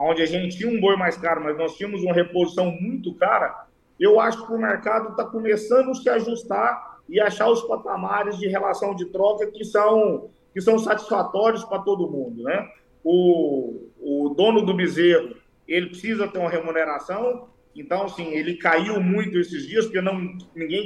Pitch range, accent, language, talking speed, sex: 170-215 Hz, Brazilian, Portuguese, 180 wpm, male